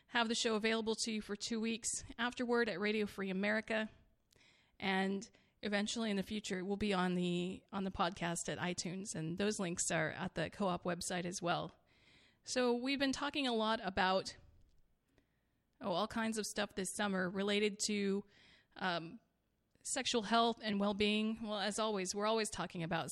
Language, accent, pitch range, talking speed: English, American, 195-235 Hz, 175 wpm